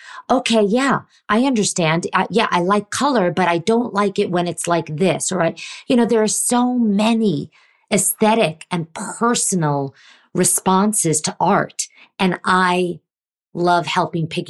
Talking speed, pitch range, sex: 150 wpm, 160-210 Hz, female